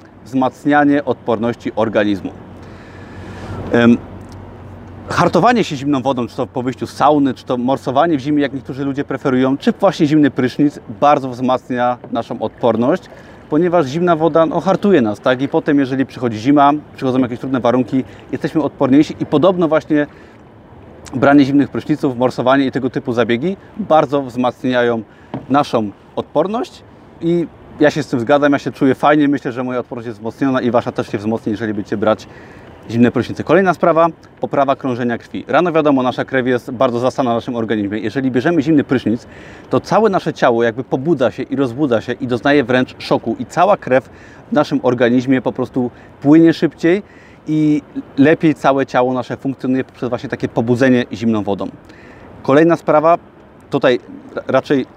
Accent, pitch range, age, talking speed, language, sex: native, 120-145 Hz, 30-49, 160 wpm, Polish, male